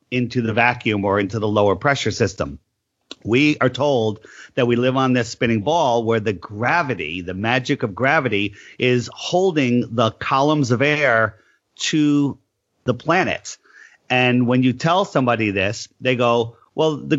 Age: 40-59